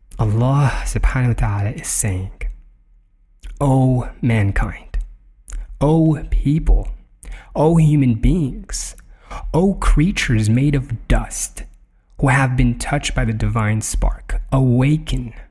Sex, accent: male, American